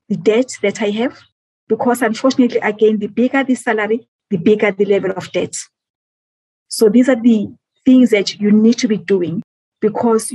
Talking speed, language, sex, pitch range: 175 wpm, English, female, 195-235 Hz